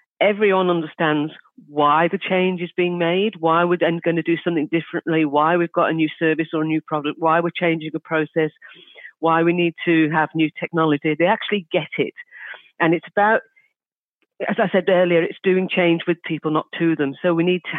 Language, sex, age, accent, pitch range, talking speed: English, female, 50-69, British, 145-170 Hz, 205 wpm